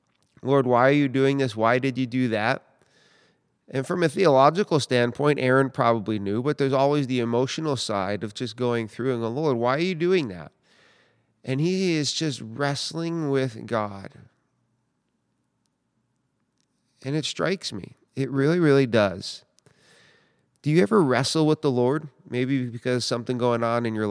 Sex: male